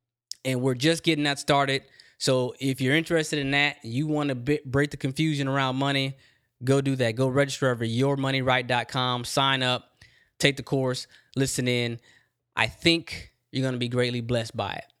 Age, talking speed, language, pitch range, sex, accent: 20-39, 175 wpm, English, 120-145 Hz, male, American